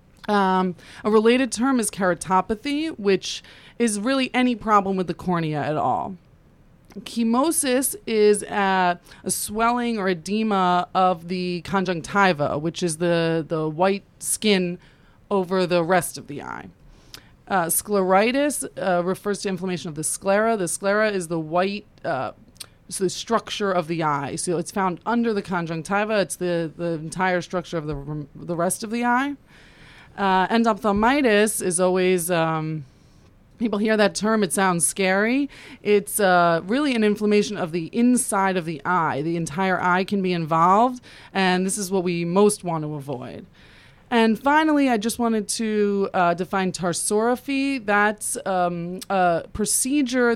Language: English